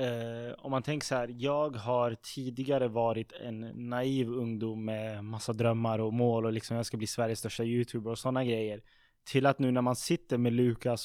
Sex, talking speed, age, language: male, 200 wpm, 20-39, Swedish